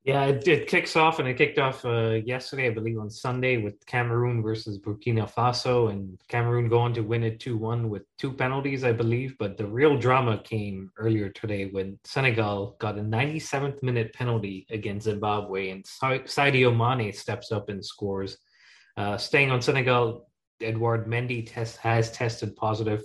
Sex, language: male, English